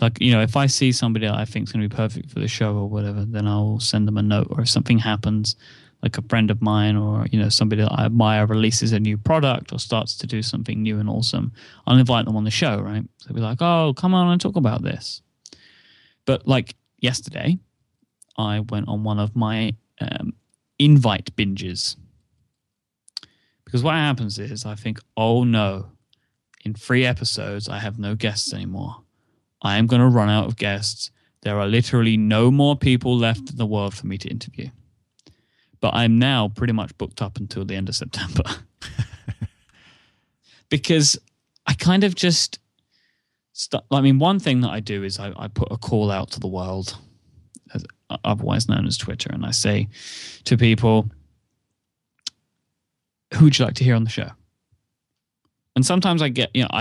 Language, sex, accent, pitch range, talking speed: English, male, British, 105-130 Hz, 190 wpm